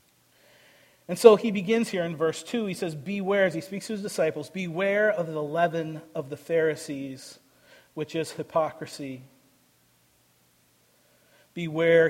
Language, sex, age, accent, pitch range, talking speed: English, male, 40-59, American, 160-185 Hz, 140 wpm